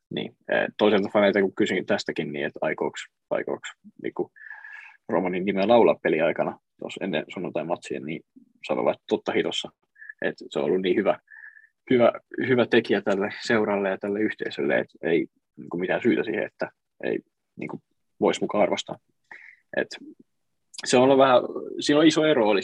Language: Finnish